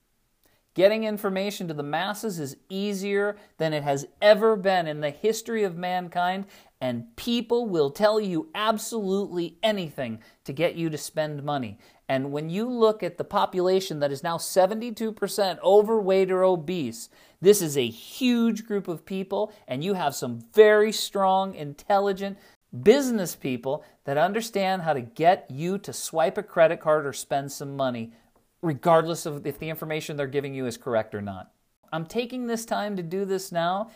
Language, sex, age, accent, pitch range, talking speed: English, male, 40-59, American, 160-215 Hz, 170 wpm